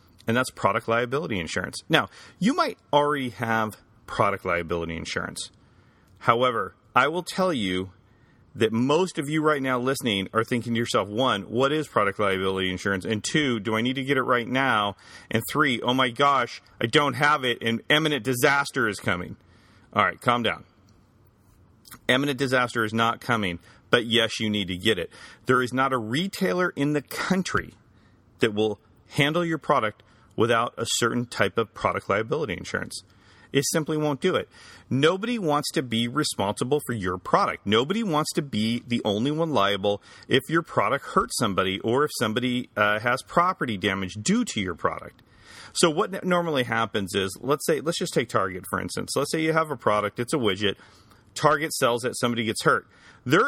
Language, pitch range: English, 105-145 Hz